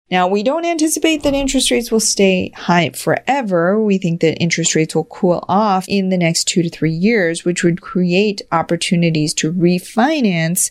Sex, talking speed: female, 180 wpm